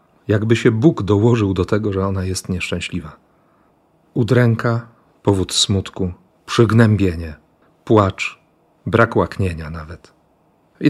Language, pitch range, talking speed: Polish, 95-120 Hz, 105 wpm